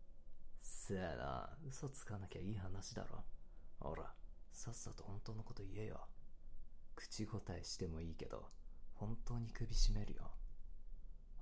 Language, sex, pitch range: Japanese, male, 75-95 Hz